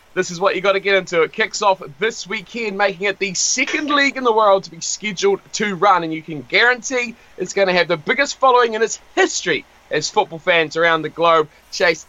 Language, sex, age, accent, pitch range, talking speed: English, male, 20-39, Australian, 170-225 Hz, 235 wpm